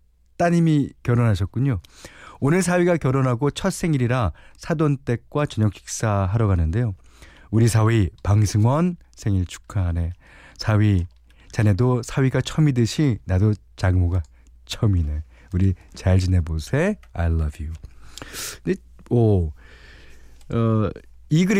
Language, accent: Korean, native